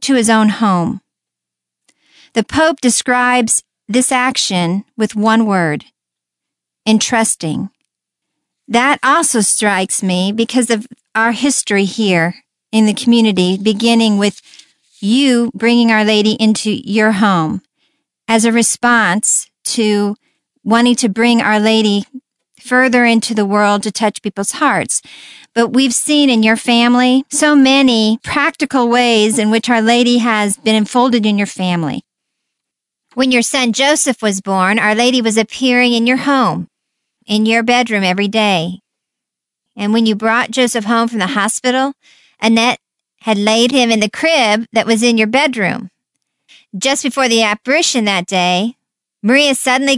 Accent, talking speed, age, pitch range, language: American, 140 wpm, 50-69, 210-250 Hz, English